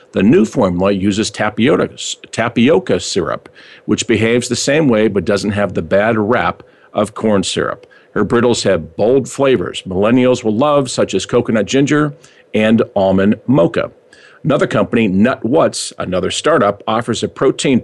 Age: 50-69